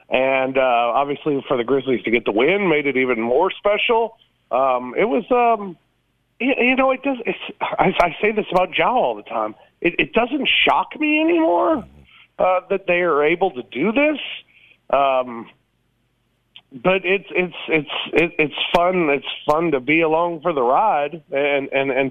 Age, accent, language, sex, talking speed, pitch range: 40-59, American, English, male, 180 wpm, 150-245 Hz